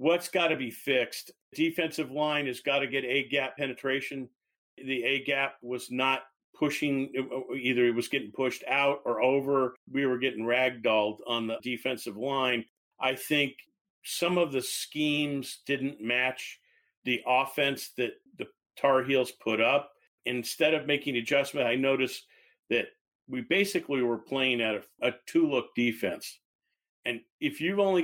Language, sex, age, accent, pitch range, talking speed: English, male, 50-69, American, 125-155 Hz, 150 wpm